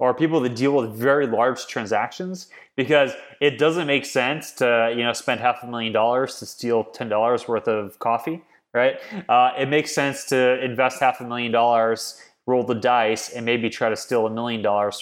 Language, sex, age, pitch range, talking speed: English, male, 20-39, 115-140 Hz, 200 wpm